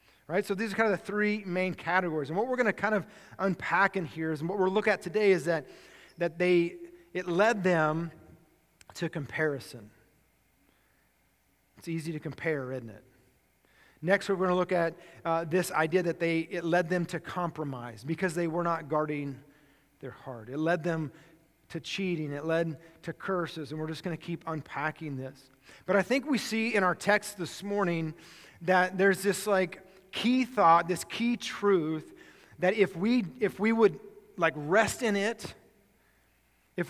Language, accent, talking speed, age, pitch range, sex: English, American, 180 wpm, 40-59, 165-200 Hz, male